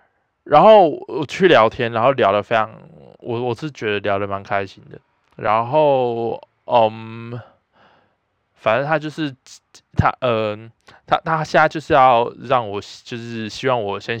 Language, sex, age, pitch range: Chinese, male, 20-39, 110-135 Hz